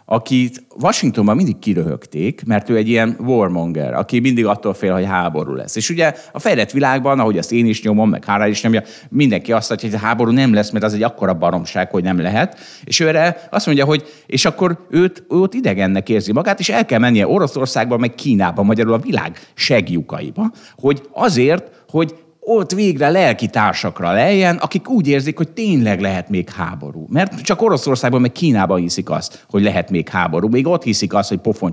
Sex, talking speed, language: male, 195 wpm, Hungarian